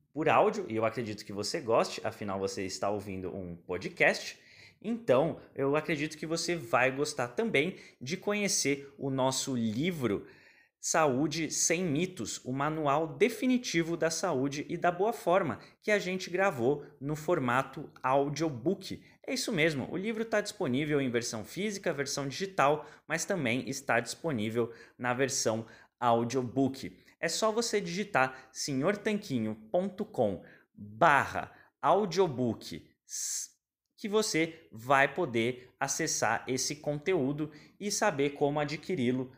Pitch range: 120-170 Hz